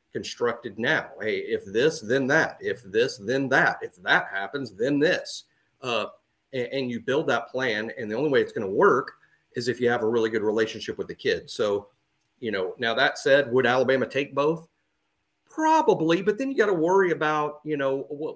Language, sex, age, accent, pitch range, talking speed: English, male, 40-59, American, 125-180 Hz, 205 wpm